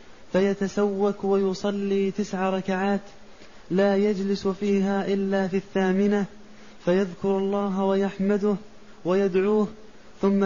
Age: 20-39